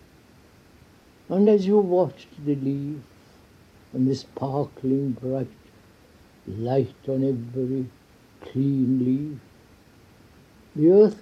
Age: 60-79